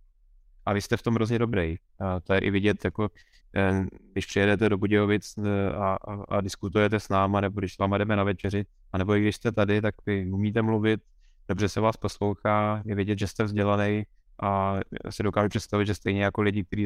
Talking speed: 200 wpm